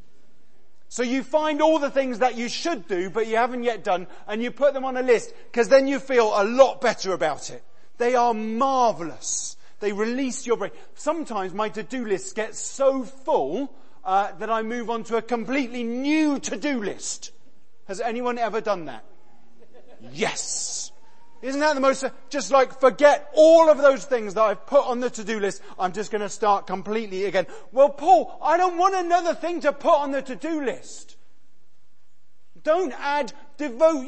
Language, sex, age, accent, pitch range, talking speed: English, male, 30-49, British, 200-270 Hz, 180 wpm